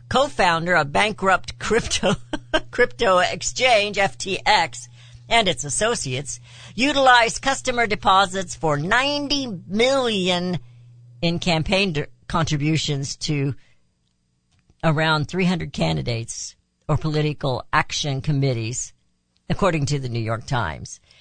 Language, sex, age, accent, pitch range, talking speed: English, female, 60-79, American, 125-205 Hz, 95 wpm